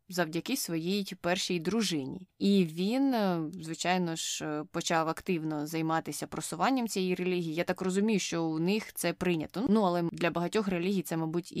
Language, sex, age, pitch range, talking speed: Ukrainian, female, 20-39, 165-185 Hz, 150 wpm